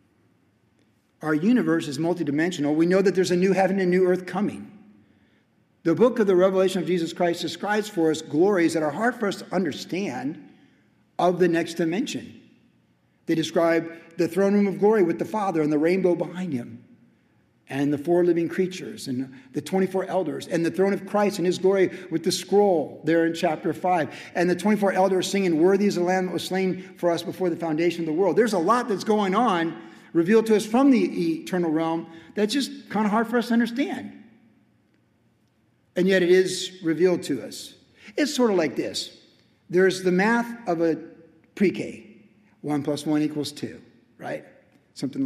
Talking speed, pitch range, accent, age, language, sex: 190 wpm, 165-195 Hz, American, 50-69, English, male